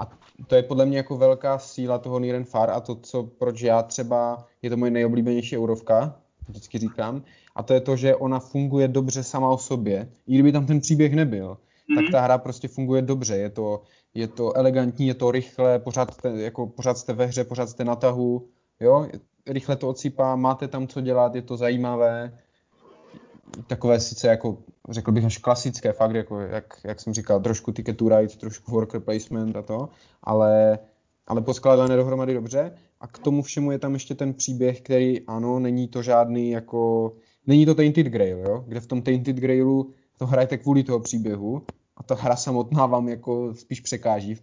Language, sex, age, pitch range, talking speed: Czech, male, 20-39, 115-130 Hz, 195 wpm